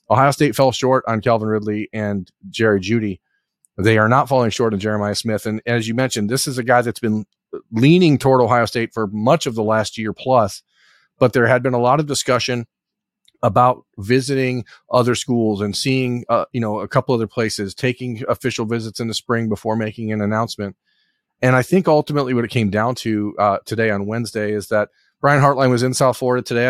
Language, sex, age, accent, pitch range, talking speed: English, male, 40-59, American, 105-125 Hz, 205 wpm